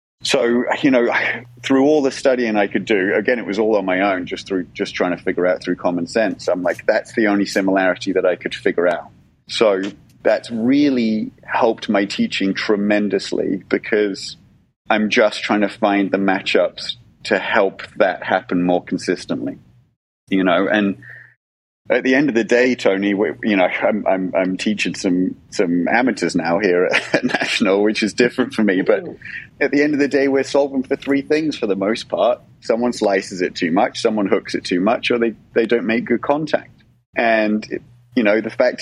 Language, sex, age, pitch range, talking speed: English, male, 30-49, 100-125 Hz, 195 wpm